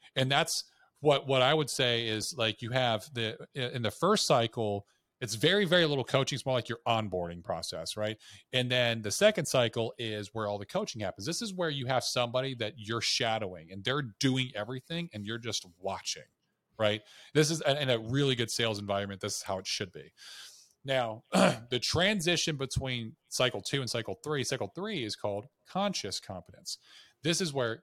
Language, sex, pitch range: English, male, 110-140 Hz